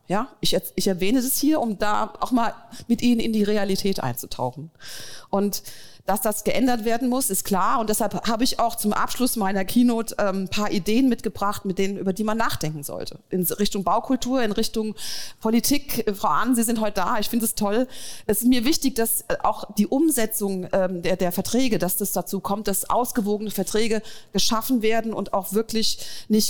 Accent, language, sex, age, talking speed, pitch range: German, German, female, 40-59, 190 wpm, 190-240 Hz